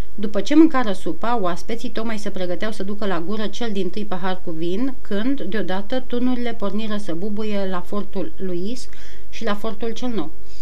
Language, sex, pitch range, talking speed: Romanian, female, 180-225 Hz, 180 wpm